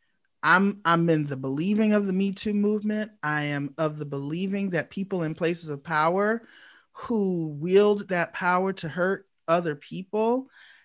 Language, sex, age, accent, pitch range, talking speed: English, male, 30-49, American, 175-225 Hz, 160 wpm